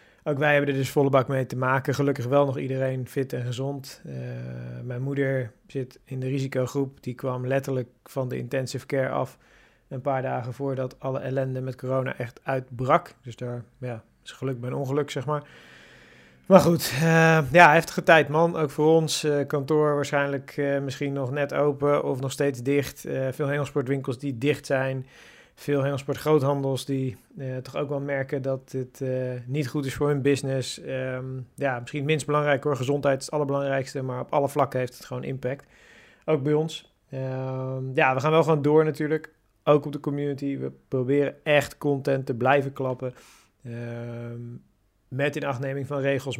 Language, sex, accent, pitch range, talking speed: Dutch, male, Dutch, 130-145 Hz, 185 wpm